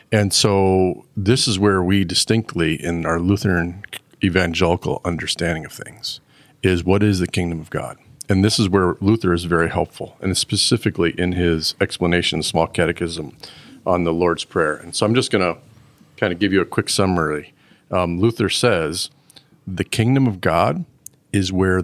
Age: 40-59